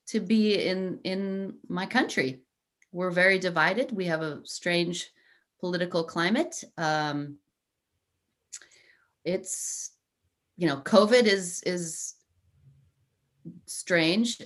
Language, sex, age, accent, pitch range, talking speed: English, female, 30-49, American, 145-195 Hz, 95 wpm